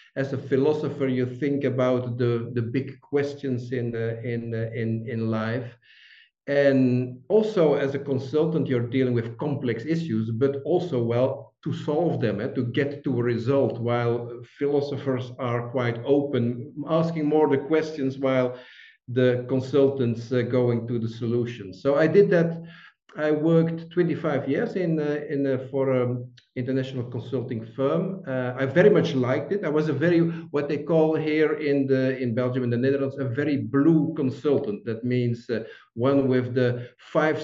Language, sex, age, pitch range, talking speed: English, male, 50-69, 125-150 Hz, 175 wpm